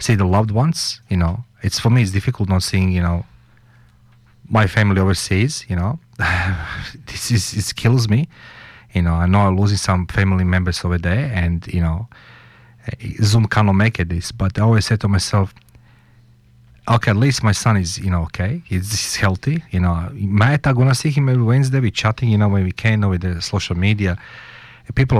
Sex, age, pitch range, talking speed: male, 40-59, 95-120 Hz, 200 wpm